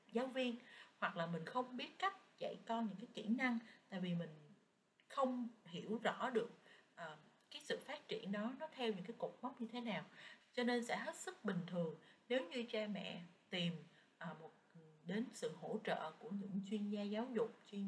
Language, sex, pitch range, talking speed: Vietnamese, female, 175-235 Hz, 205 wpm